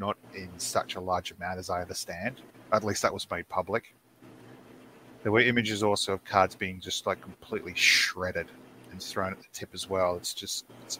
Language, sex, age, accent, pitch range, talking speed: English, male, 30-49, Australian, 95-115 Hz, 195 wpm